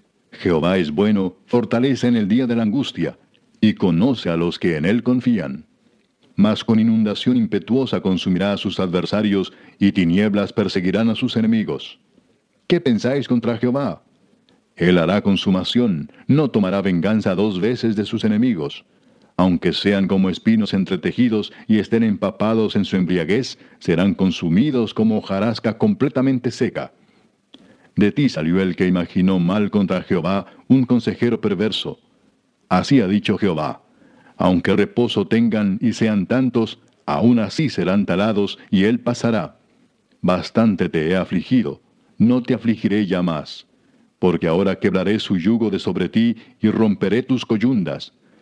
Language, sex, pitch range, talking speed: Spanish, male, 95-120 Hz, 140 wpm